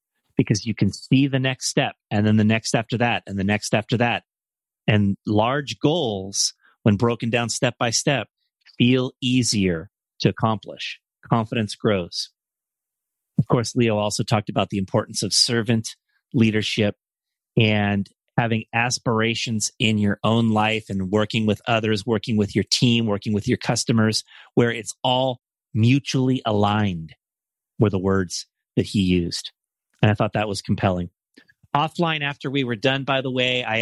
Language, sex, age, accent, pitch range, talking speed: English, male, 30-49, American, 105-125 Hz, 160 wpm